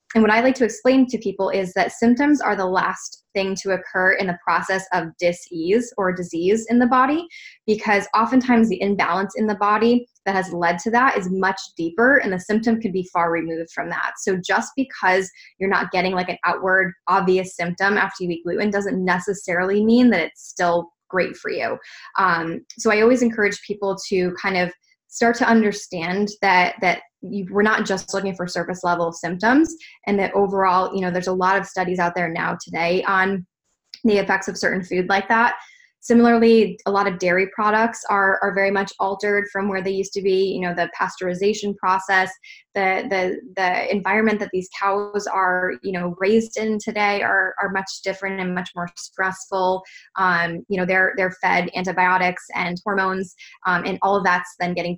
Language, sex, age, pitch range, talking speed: English, female, 10-29, 180-210 Hz, 195 wpm